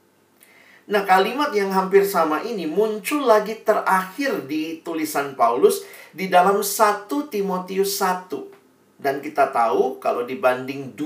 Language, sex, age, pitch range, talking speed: Indonesian, male, 40-59, 140-205 Hz, 120 wpm